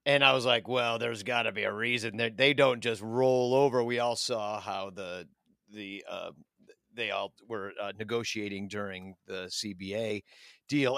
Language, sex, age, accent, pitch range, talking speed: English, male, 40-59, American, 120-150 Hz, 175 wpm